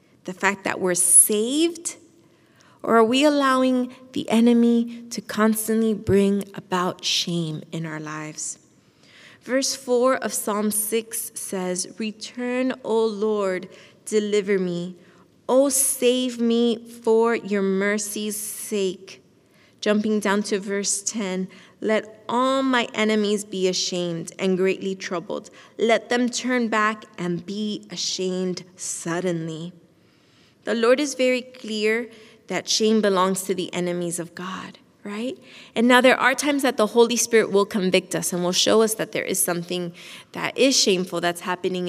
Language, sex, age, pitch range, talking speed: English, female, 20-39, 185-235 Hz, 140 wpm